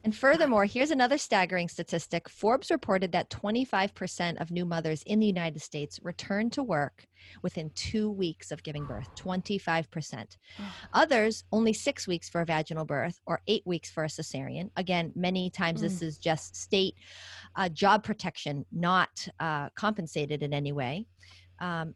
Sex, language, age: female, English, 30-49